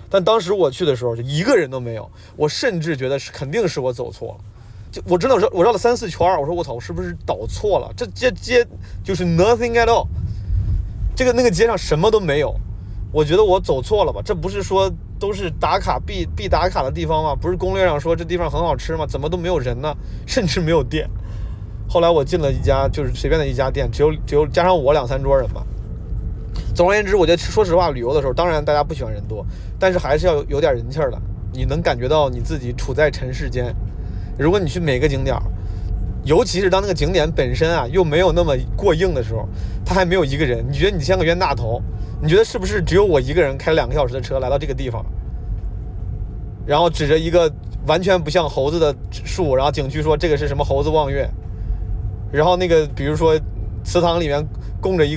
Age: 20-39